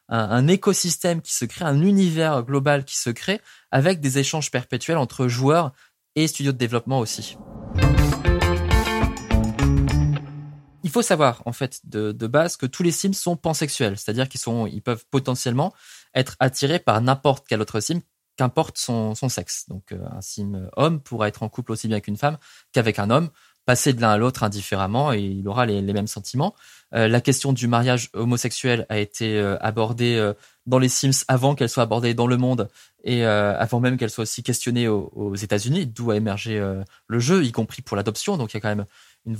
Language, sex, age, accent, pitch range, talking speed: French, male, 20-39, French, 110-140 Hz, 200 wpm